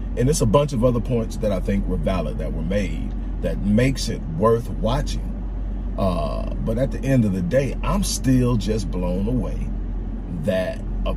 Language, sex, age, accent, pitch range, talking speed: English, male, 40-59, American, 90-110 Hz, 190 wpm